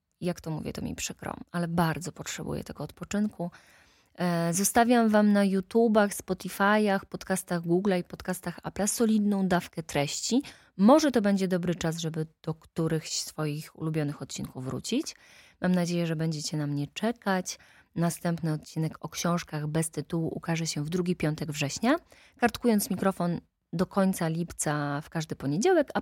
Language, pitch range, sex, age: Polish, 155-195 Hz, female, 20-39